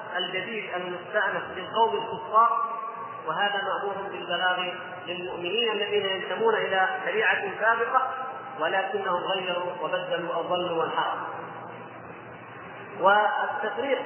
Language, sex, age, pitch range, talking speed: Arabic, male, 30-49, 180-235 Hz, 90 wpm